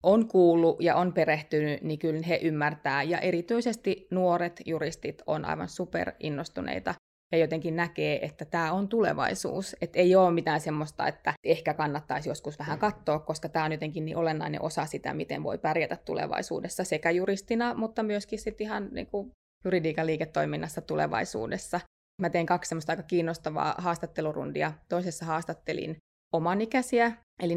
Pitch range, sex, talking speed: 155-190 Hz, female, 145 wpm